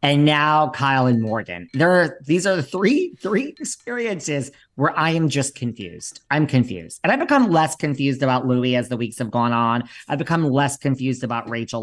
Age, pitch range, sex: 40-59, 130-190 Hz, male